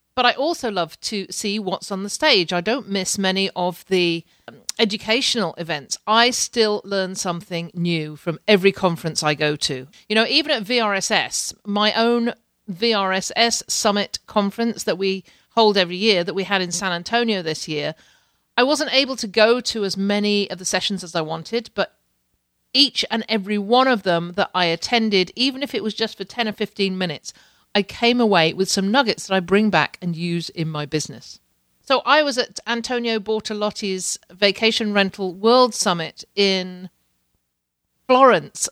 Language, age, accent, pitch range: English, 40-59, British, 170-220 Hz